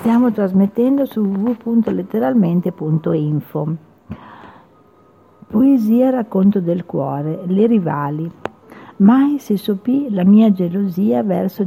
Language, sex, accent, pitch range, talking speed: Italian, female, native, 180-225 Hz, 85 wpm